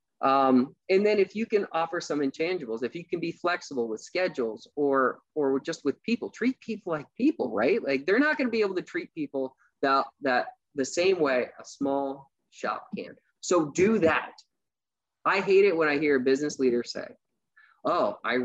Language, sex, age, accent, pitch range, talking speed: English, male, 20-39, American, 135-220 Hz, 195 wpm